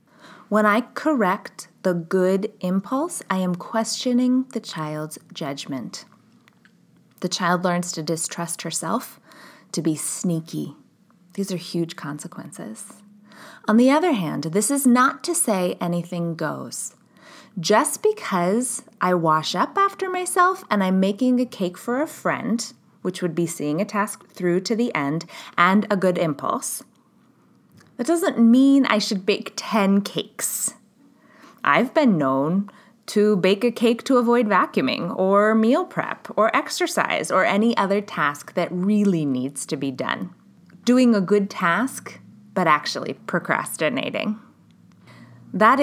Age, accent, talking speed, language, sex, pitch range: 20-39, American, 140 wpm, English, female, 175-240 Hz